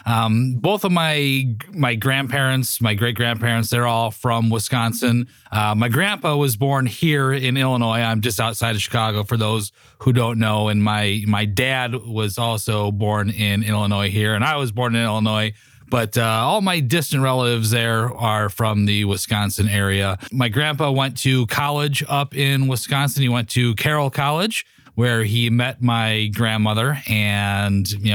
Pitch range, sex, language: 105-135 Hz, male, English